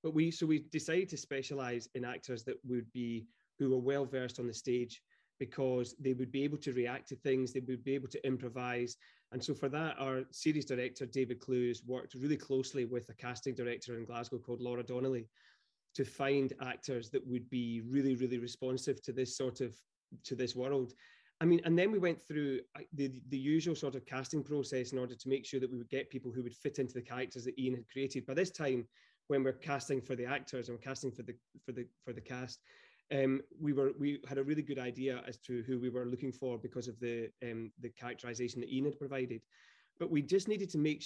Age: 30-49